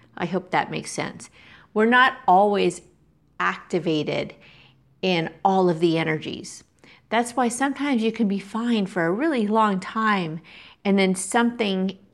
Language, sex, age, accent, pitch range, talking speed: English, female, 40-59, American, 170-220 Hz, 145 wpm